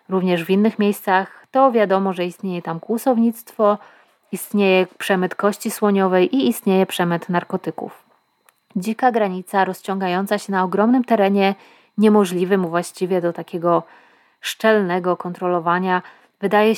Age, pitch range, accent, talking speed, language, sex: 30-49, 180-220 Hz, native, 115 wpm, Polish, female